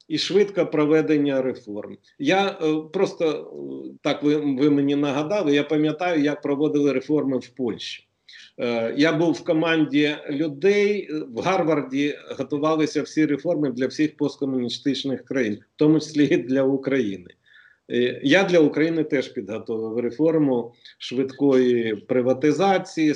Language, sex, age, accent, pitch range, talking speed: Ukrainian, male, 40-59, native, 135-180 Hz, 125 wpm